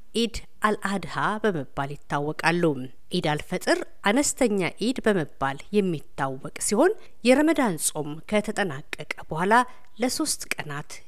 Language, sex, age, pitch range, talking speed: Amharic, female, 50-69, 155-235 Hz, 90 wpm